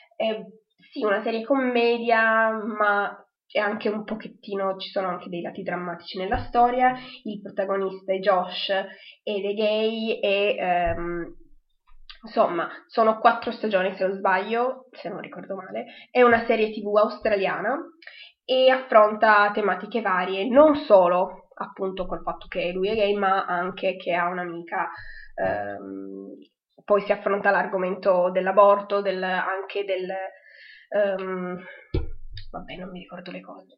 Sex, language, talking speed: female, Italian, 120 wpm